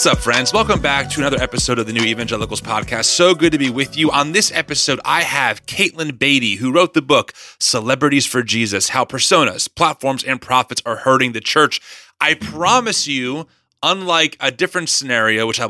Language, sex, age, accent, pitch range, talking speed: English, male, 30-49, American, 125-170 Hz, 195 wpm